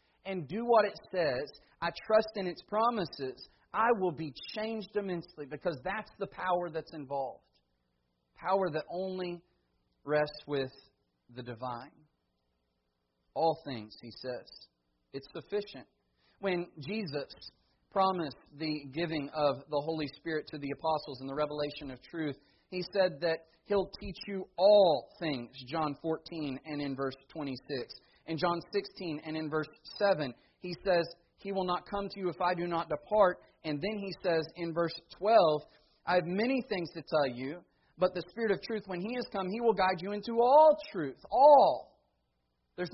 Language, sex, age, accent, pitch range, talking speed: English, male, 40-59, American, 135-185 Hz, 165 wpm